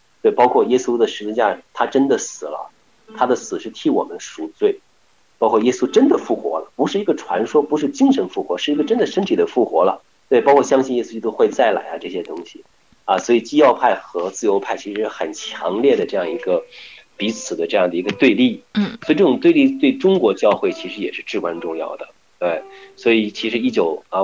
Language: Chinese